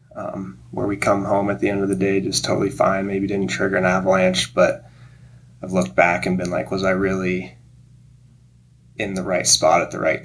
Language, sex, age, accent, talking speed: English, male, 20-39, American, 210 wpm